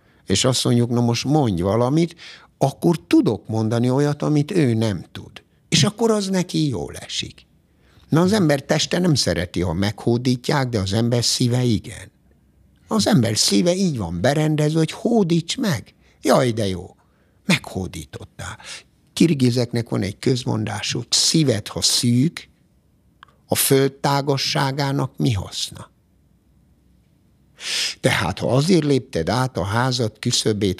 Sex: male